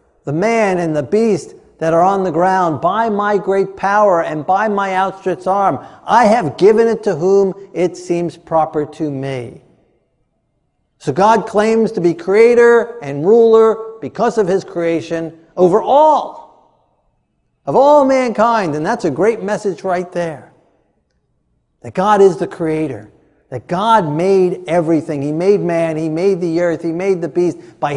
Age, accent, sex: 50-69, American, male